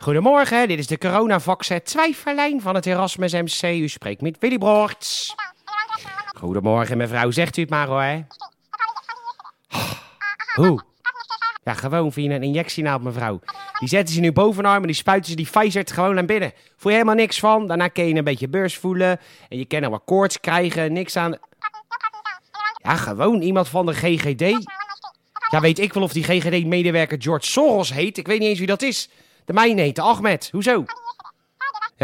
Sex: male